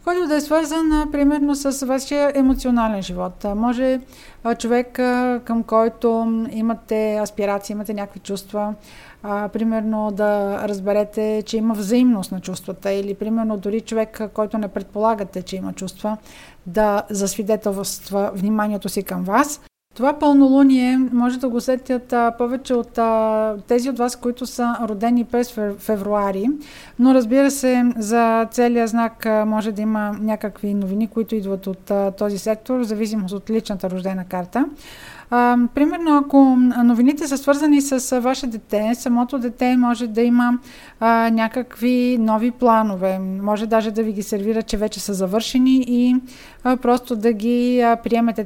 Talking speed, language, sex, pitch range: 135 wpm, Bulgarian, female, 210-245 Hz